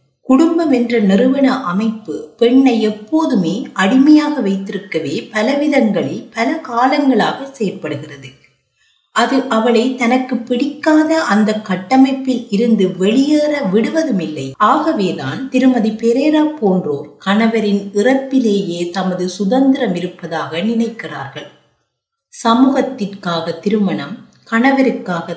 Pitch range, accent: 190-260 Hz, native